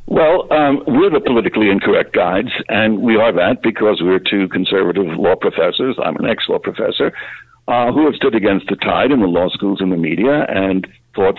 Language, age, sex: English, 60-79, male